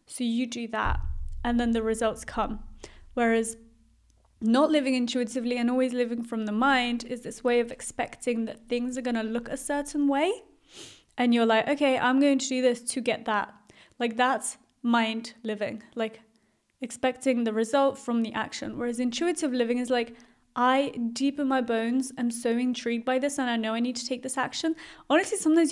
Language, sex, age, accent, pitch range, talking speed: English, female, 20-39, British, 235-275 Hz, 190 wpm